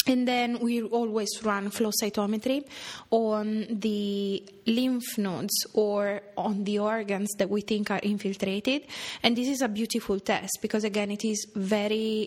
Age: 20-39